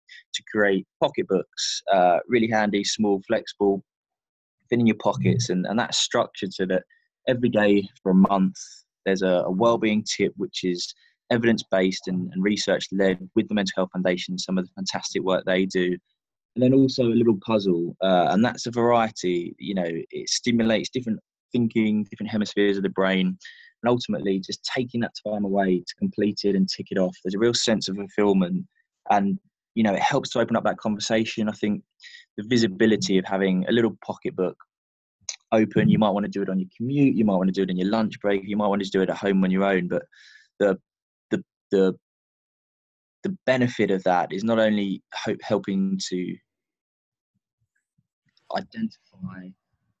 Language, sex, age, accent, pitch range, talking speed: English, male, 20-39, British, 95-115 Hz, 190 wpm